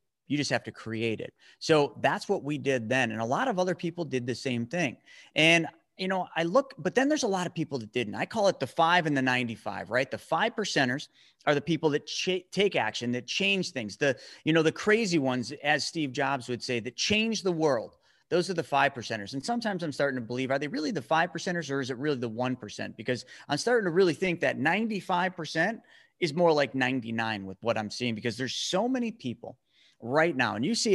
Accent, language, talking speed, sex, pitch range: American, English, 240 wpm, male, 135-195 Hz